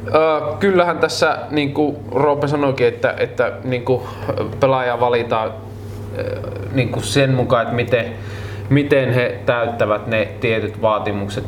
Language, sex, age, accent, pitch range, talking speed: Finnish, male, 20-39, native, 105-135 Hz, 110 wpm